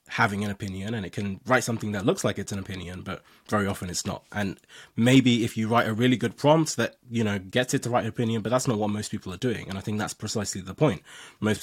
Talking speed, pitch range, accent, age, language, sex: 275 wpm, 100-115 Hz, British, 20-39, English, male